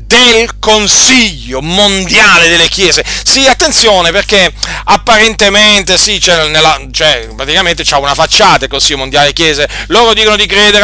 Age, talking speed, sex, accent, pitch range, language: 40-59, 145 wpm, male, native, 140-190 Hz, Italian